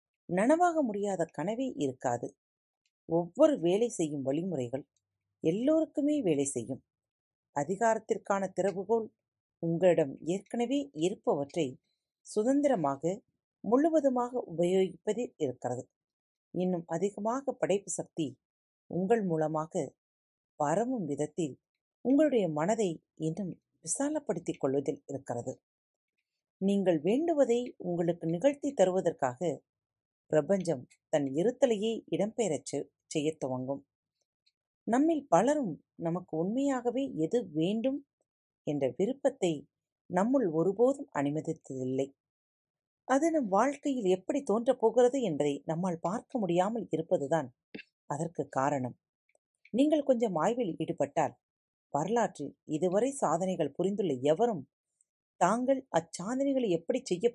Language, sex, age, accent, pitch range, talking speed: Tamil, female, 40-59, native, 150-240 Hz, 85 wpm